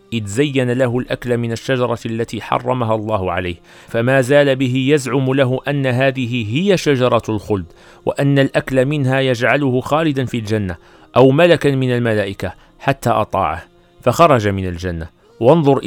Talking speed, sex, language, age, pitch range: 140 wpm, male, Arabic, 40-59, 105-135 Hz